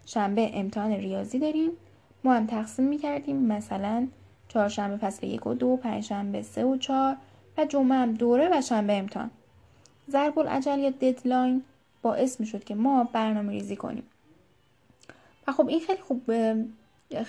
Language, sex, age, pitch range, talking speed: Persian, female, 10-29, 215-270 Hz, 150 wpm